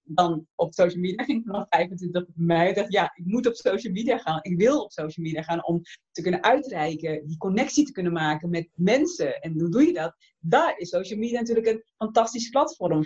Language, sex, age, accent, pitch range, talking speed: English, female, 30-49, Dutch, 170-220 Hz, 220 wpm